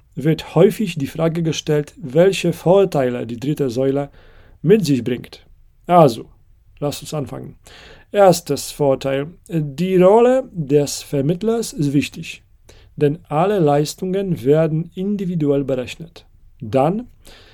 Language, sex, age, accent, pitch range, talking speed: German, male, 40-59, German, 130-180 Hz, 110 wpm